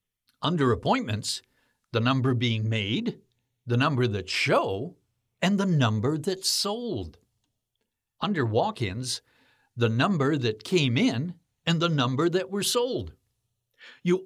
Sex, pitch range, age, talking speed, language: male, 120-170 Hz, 60-79, 120 wpm, English